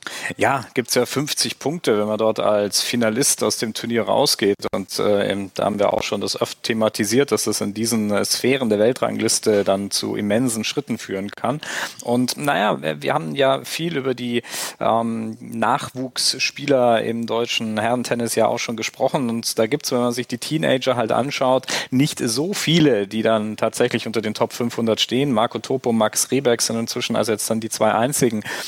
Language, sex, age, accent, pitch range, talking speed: German, male, 40-59, German, 110-125 Hz, 190 wpm